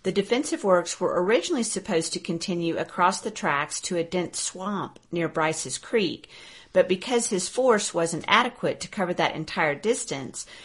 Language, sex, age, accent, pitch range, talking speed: English, female, 50-69, American, 155-195 Hz, 165 wpm